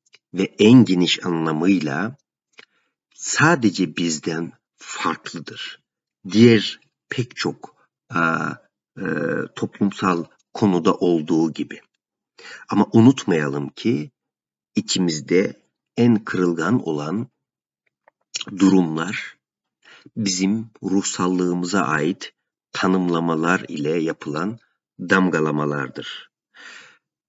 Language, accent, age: Turkish, native, 50-69